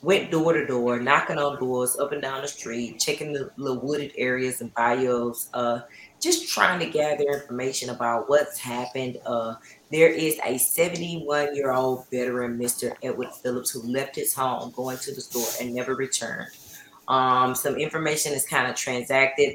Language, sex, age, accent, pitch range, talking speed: English, female, 30-49, American, 130-165 Hz, 170 wpm